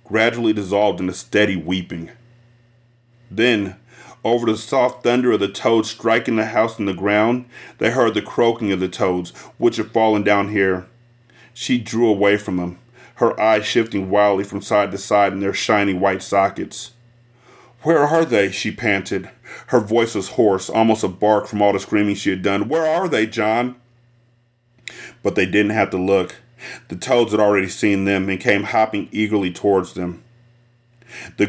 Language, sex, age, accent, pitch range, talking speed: English, male, 30-49, American, 100-120 Hz, 175 wpm